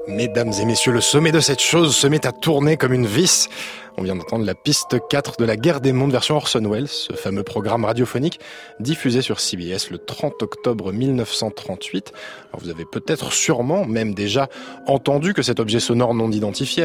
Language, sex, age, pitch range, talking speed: French, male, 20-39, 115-155 Hz, 190 wpm